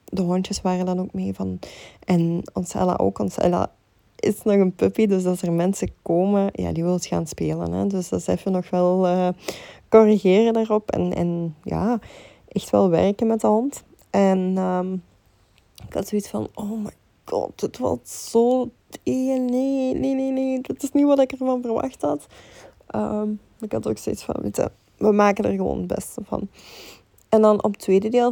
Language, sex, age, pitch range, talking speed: Dutch, female, 20-39, 175-215 Hz, 185 wpm